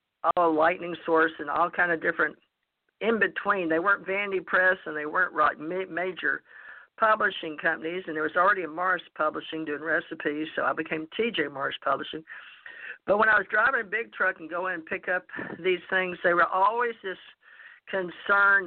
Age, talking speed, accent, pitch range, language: 50-69, 185 wpm, American, 160-190 Hz, English